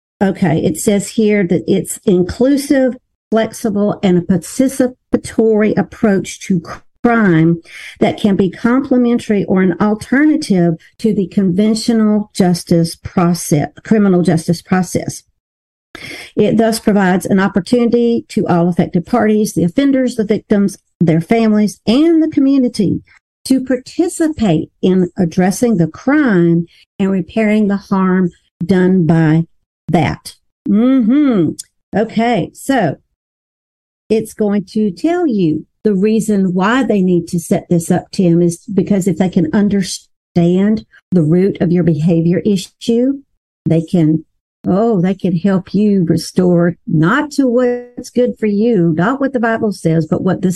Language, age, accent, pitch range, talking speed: English, 50-69, American, 175-225 Hz, 135 wpm